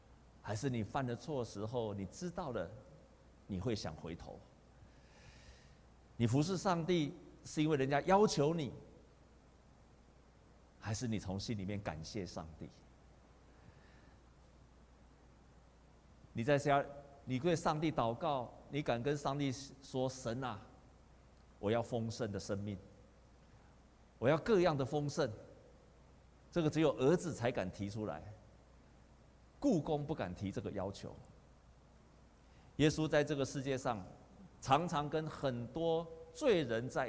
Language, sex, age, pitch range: Chinese, male, 50-69, 95-155 Hz